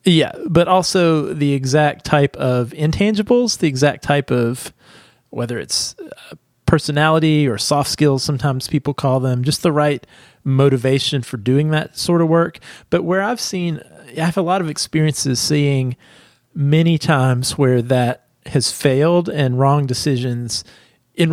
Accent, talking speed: American, 150 wpm